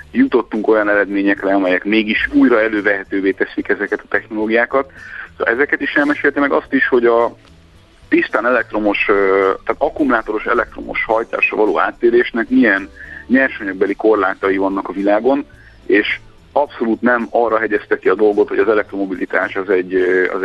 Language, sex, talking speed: Hungarian, male, 135 wpm